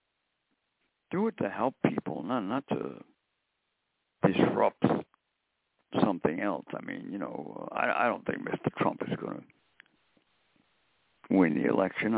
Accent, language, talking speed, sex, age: American, English, 135 wpm, male, 60-79